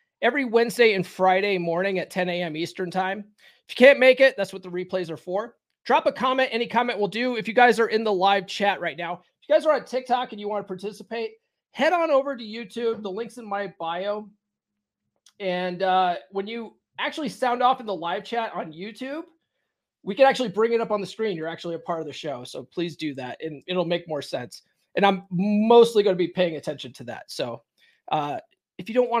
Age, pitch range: 30-49, 180-235 Hz